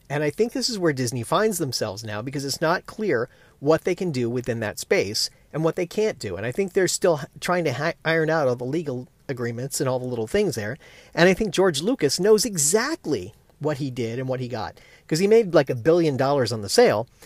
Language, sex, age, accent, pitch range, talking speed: English, male, 40-59, American, 125-175 Hz, 240 wpm